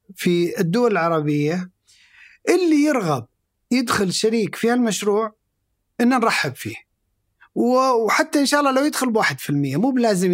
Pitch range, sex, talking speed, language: 160-220 Hz, male, 135 wpm, Arabic